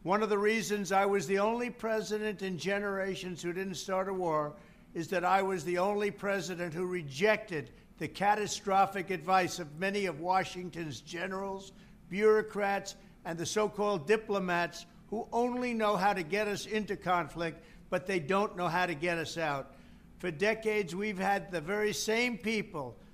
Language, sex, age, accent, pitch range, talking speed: English, male, 60-79, American, 180-215 Hz, 165 wpm